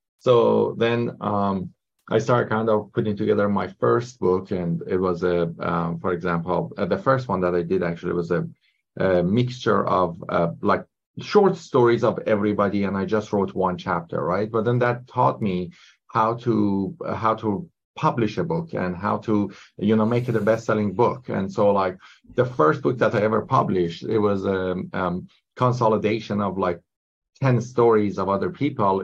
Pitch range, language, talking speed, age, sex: 95-115 Hz, English, 185 wpm, 30-49, male